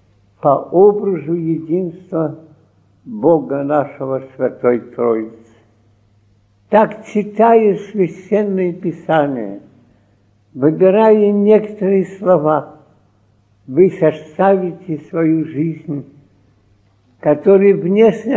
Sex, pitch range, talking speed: male, 110-180 Hz, 65 wpm